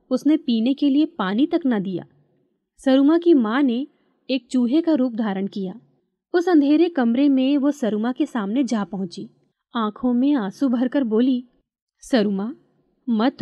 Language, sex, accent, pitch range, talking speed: Hindi, female, native, 220-285 Hz, 150 wpm